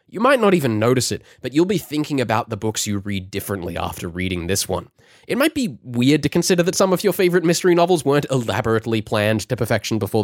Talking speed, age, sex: 230 wpm, 20-39, male